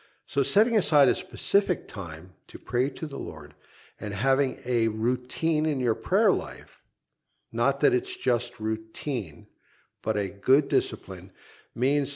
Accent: American